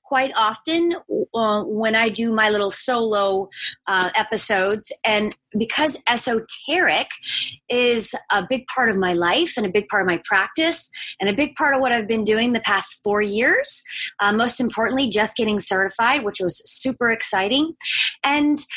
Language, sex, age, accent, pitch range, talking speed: English, female, 20-39, American, 210-295 Hz, 165 wpm